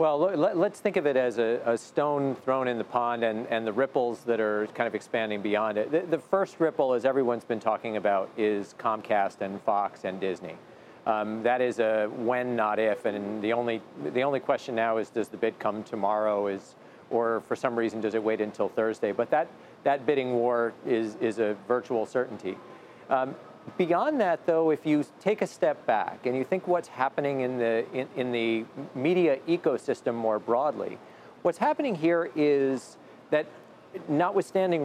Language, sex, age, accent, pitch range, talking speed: English, male, 40-59, American, 115-155 Hz, 190 wpm